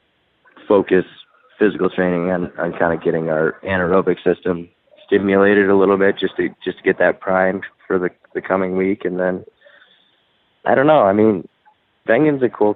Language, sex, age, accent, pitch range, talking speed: English, male, 20-39, American, 85-100 Hz, 175 wpm